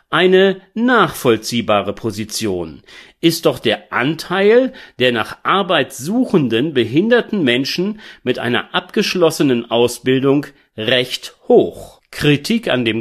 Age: 40-59